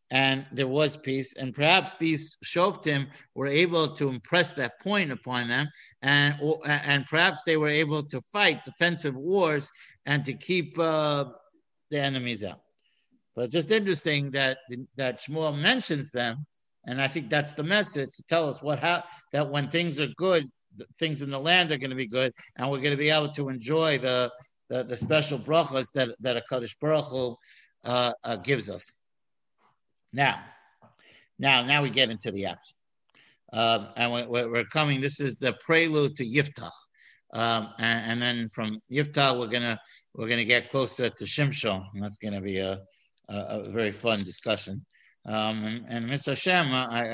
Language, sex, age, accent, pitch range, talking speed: English, male, 60-79, American, 115-150 Hz, 175 wpm